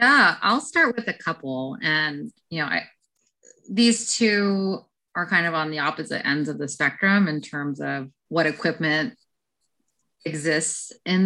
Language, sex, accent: English, female, American